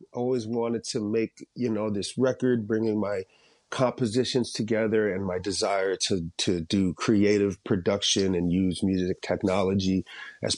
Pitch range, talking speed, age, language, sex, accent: 100-115 Hz, 140 wpm, 30-49, English, male, American